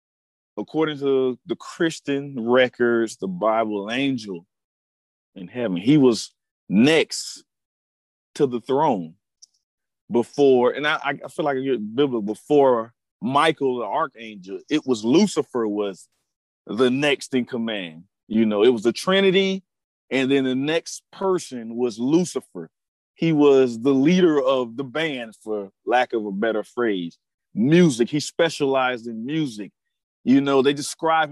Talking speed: 140 wpm